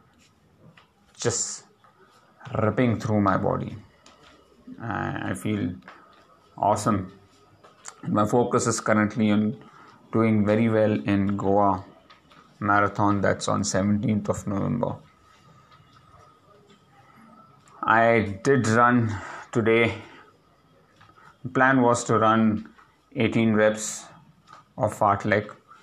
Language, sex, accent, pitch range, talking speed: English, male, Indian, 100-115 Hz, 85 wpm